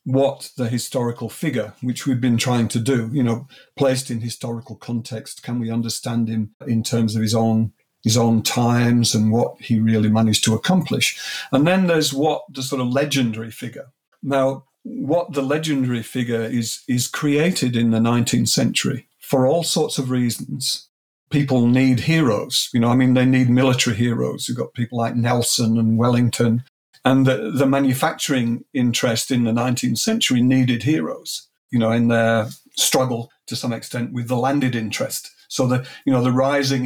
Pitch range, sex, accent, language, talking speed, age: 115-135 Hz, male, British, English, 175 wpm, 50-69